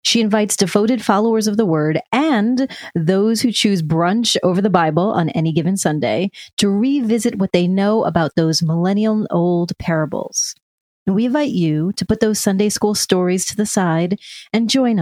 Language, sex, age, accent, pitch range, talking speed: English, female, 30-49, American, 170-220 Hz, 170 wpm